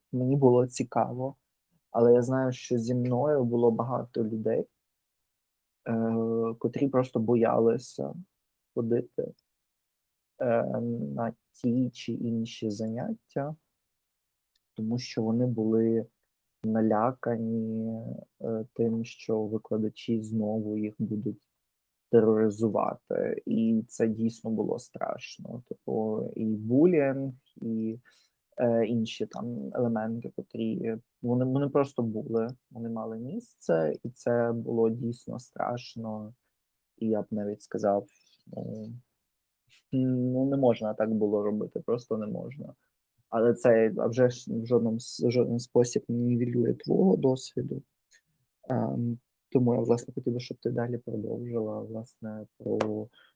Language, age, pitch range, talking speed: Ukrainian, 20-39, 110-125 Hz, 105 wpm